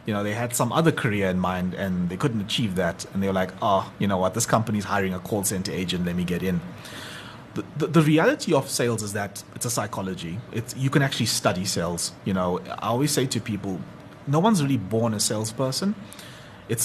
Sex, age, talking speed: male, 30-49, 225 wpm